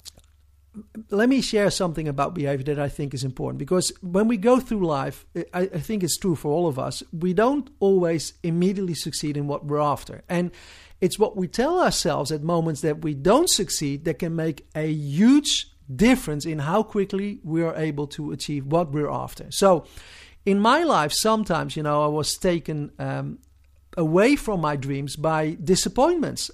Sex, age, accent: male, 50-69, Dutch